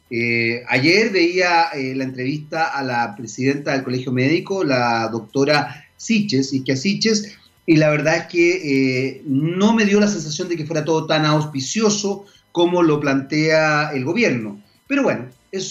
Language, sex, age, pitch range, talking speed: Spanish, male, 40-59, 145-205 Hz, 155 wpm